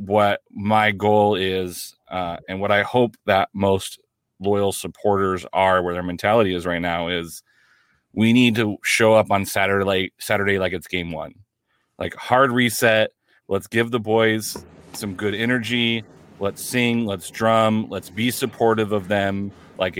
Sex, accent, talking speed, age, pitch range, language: male, American, 160 wpm, 30-49, 95-110 Hz, English